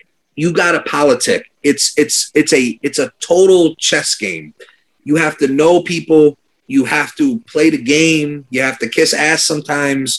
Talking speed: 175 wpm